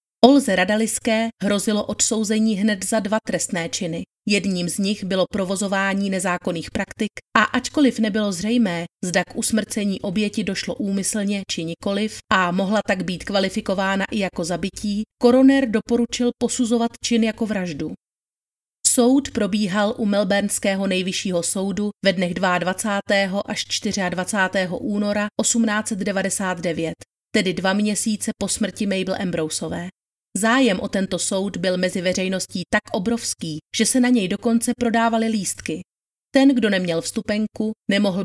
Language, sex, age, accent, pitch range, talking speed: Czech, female, 30-49, native, 190-220 Hz, 130 wpm